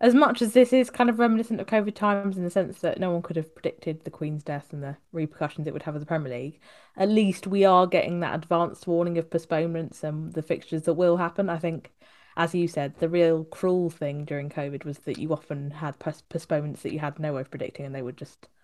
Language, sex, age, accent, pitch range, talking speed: English, female, 20-39, British, 150-190 Hz, 250 wpm